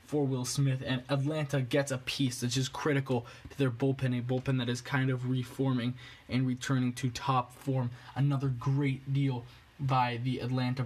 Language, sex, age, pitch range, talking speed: English, male, 20-39, 125-150 Hz, 175 wpm